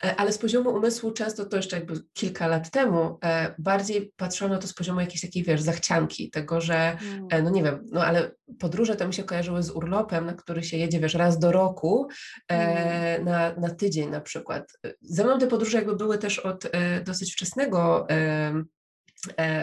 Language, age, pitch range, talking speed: English, 20-39, 175-210 Hz, 195 wpm